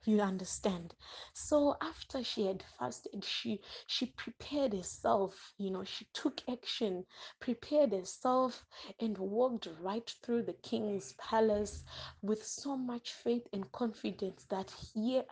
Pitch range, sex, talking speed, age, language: 195-250 Hz, female, 130 wpm, 20-39, English